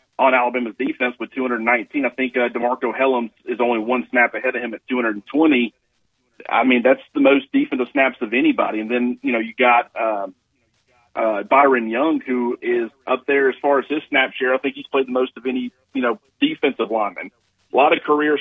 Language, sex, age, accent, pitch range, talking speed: English, male, 40-59, American, 115-135 Hz, 210 wpm